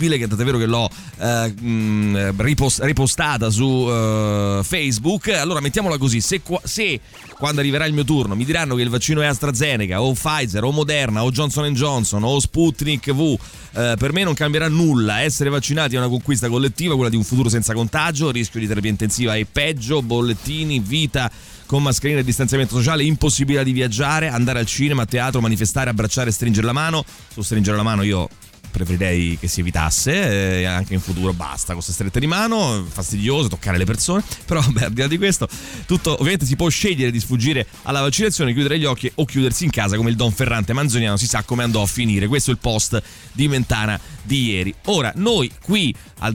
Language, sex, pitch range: Italian, male, 110-145 Hz